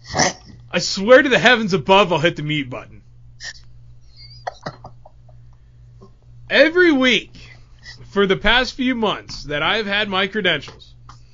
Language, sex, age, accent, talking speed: English, male, 30-49, American, 120 wpm